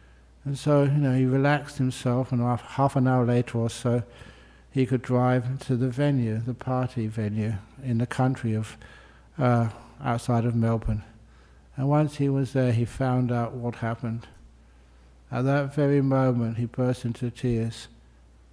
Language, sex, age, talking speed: English, male, 60-79, 160 wpm